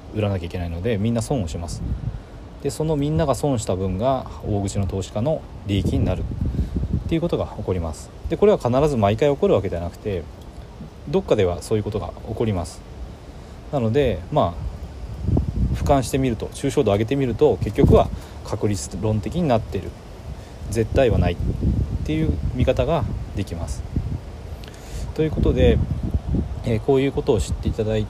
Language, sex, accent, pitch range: Japanese, male, native, 85-115 Hz